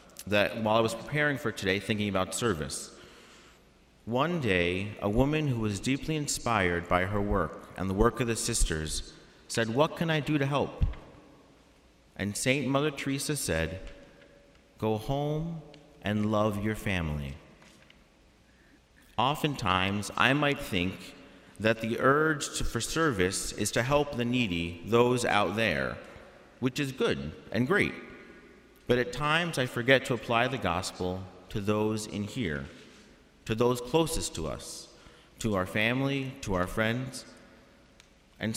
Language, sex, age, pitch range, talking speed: English, male, 40-59, 100-135 Hz, 145 wpm